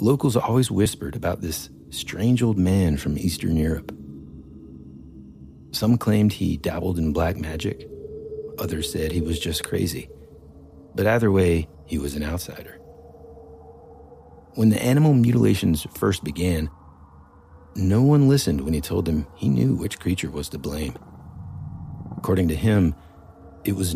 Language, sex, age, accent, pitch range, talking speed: English, male, 40-59, American, 80-110 Hz, 140 wpm